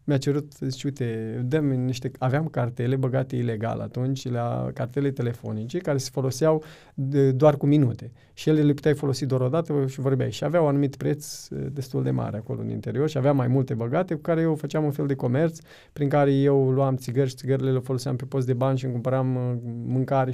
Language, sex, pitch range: Romanian, male, 125-155 Hz